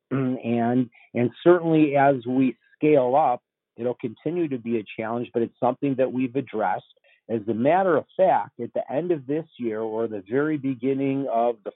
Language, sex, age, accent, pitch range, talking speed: English, male, 50-69, American, 115-135 Hz, 185 wpm